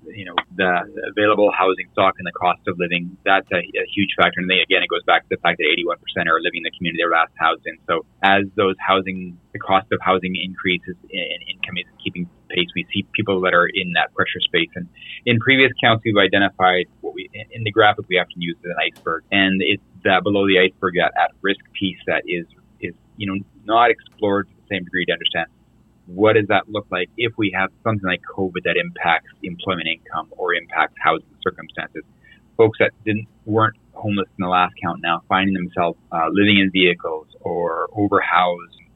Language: English